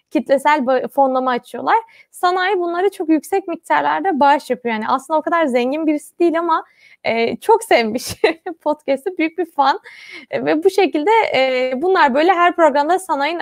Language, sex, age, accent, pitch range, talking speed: Turkish, female, 20-39, native, 250-330 Hz, 160 wpm